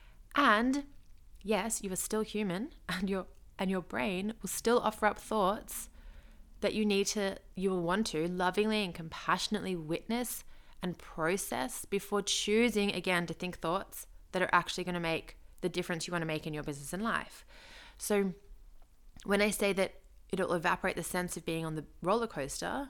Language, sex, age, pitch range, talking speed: English, female, 20-39, 175-225 Hz, 175 wpm